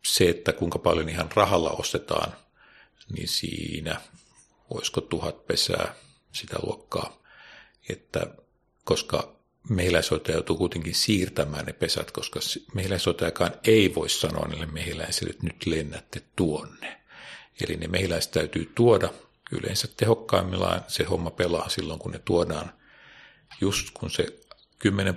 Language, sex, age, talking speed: Finnish, male, 50-69, 120 wpm